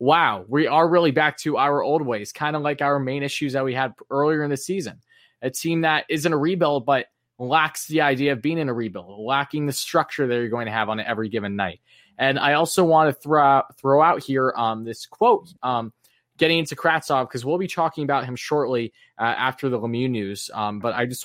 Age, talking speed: 20-39, 230 wpm